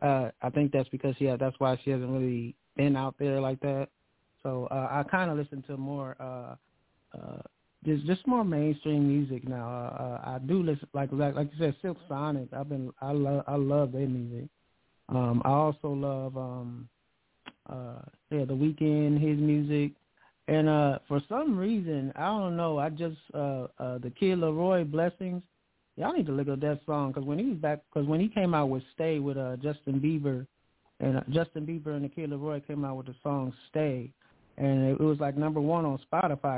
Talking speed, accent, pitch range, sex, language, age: 200 wpm, American, 130-155 Hz, male, English, 20-39